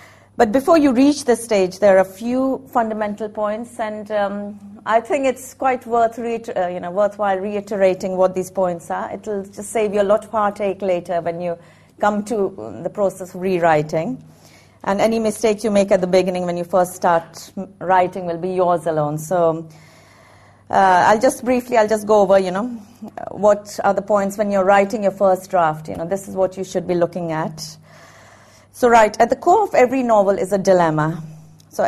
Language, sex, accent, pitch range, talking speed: English, female, Indian, 170-215 Hz, 200 wpm